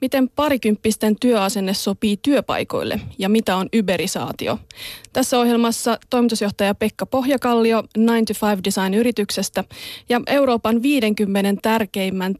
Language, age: Finnish, 30-49